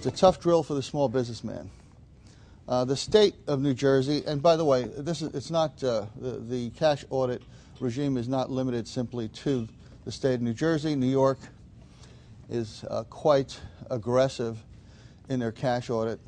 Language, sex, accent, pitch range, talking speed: English, male, American, 115-135 Hz, 175 wpm